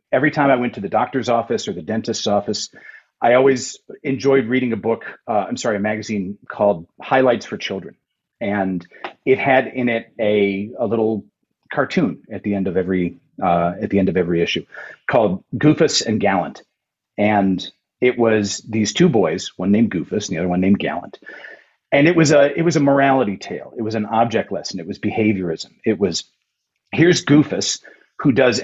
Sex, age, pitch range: male, 40-59, 100-140 Hz